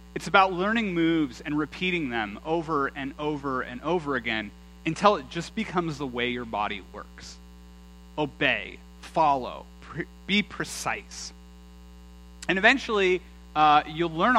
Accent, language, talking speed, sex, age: American, English, 130 wpm, male, 30-49